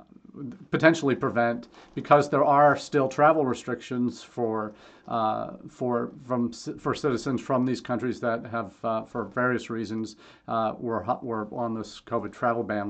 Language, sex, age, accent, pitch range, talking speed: English, male, 40-59, American, 115-135 Hz, 145 wpm